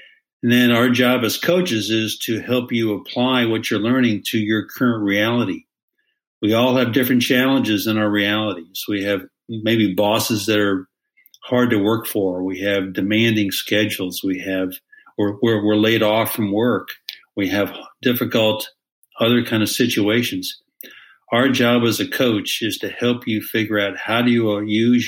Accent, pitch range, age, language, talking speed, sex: American, 105-120 Hz, 60-79, English, 170 wpm, male